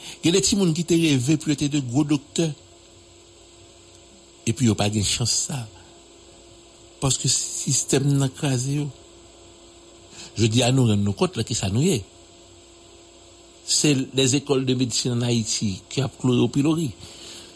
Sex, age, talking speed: male, 60-79, 155 wpm